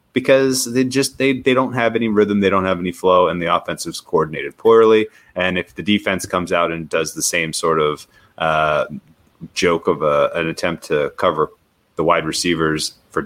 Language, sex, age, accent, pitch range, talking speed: English, male, 30-49, American, 85-115 Hz, 200 wpm